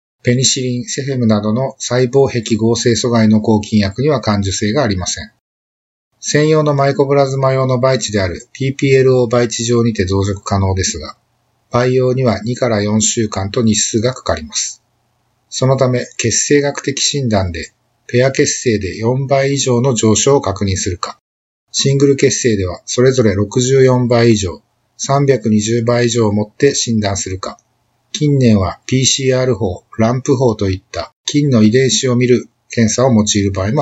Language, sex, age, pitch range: Japanese, male, 50-69, 105-130 Hz